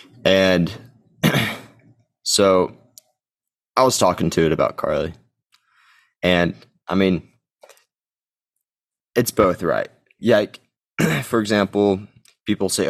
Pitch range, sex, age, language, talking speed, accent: 95-110 Hz, male, 20-39, English, 100 wpm, American